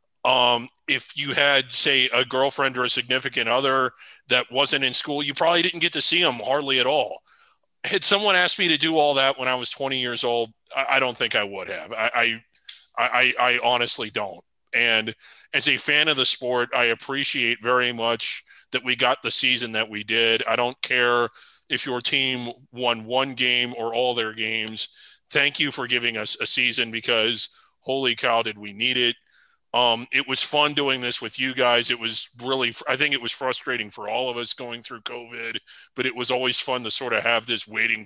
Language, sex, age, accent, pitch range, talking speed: English, male, 30-49, American, 115-135 Hz, 205 wpm